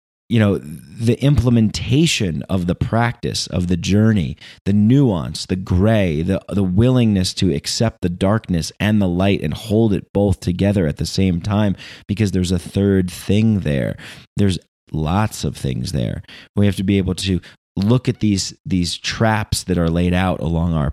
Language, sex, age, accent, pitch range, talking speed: English, male, 30-49, American, 95-115 Hz, 175 wpm